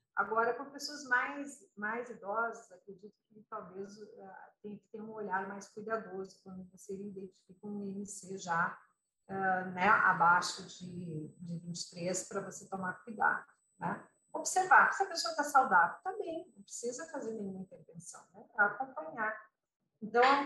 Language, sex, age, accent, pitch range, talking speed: Portuguese, female, 50-69, Brazilian, 195-250 Hz, 150 wpm